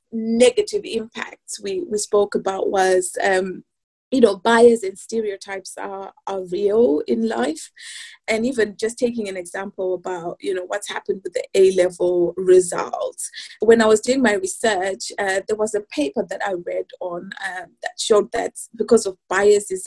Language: English